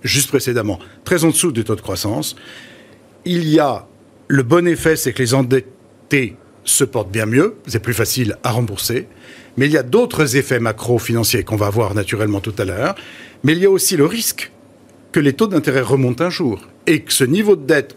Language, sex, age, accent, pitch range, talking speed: French, male, 60-79, French, 115-145 Hz, 210 wpm